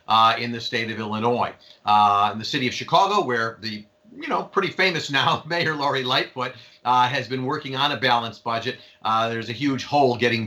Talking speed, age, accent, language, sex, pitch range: 205 wpm, 40-59, American, English, male, 125-185 Hz